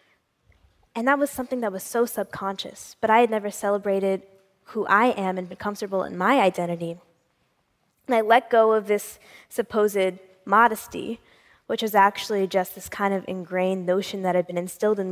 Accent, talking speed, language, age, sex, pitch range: American, 175 wpm, English, 10-29, female, 190-225 Hz